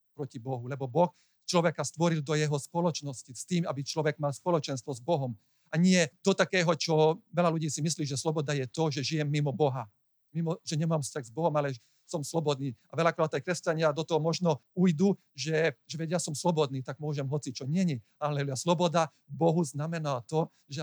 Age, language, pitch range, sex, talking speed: 40-59, Slovak, 145-170 Hz, male, 190 wpm